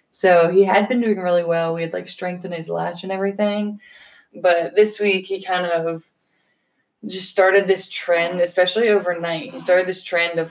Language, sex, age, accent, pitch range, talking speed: English, female, 20-39, American, 165-195 Hz, 185 wpm